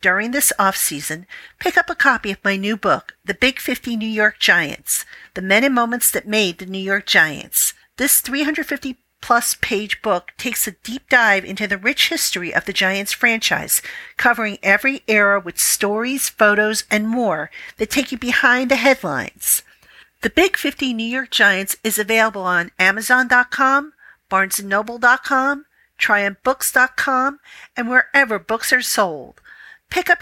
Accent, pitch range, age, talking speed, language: American, 200-265 Hz, 50-69, 150 wpm, English